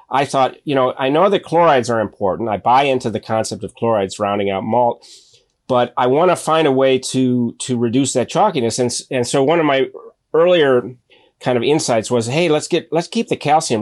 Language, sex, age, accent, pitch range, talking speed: English, male, 30-49, American, 110-135 Hz, 215 wpm